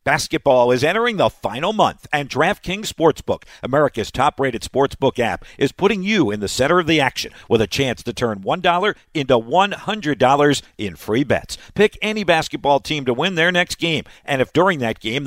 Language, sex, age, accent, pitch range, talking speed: English, male, 60-79, American, 125-175 Hz, 185 wpm